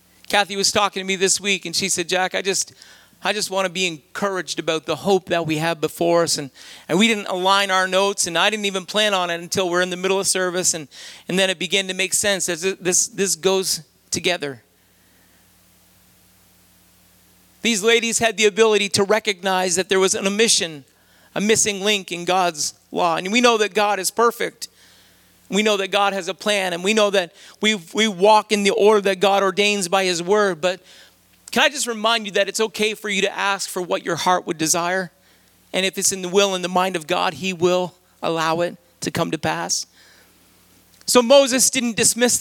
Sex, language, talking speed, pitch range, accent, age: male, English, 215 wpm, 165-205 Hz, American, 40-59